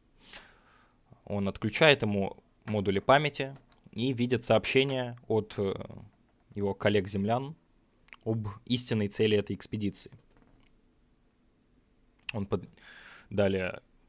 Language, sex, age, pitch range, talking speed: Russian, male, 20-39, 100-120 Hz, 75 wpm